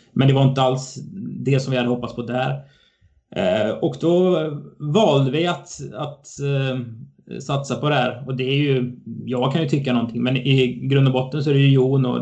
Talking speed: 205 wpm